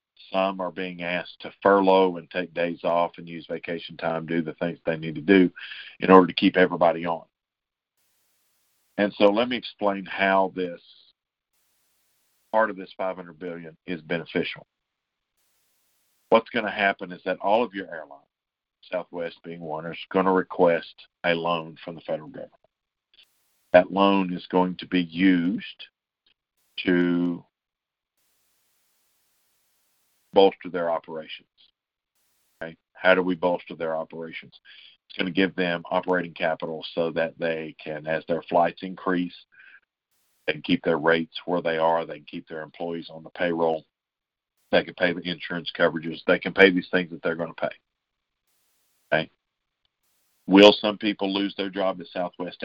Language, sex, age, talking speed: English, male, 50-69, 155 wpm